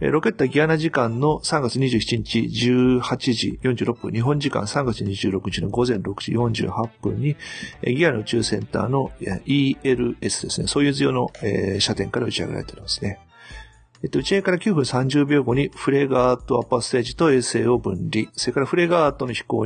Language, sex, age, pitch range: Japanese, male, 30-49, 110-150 Hz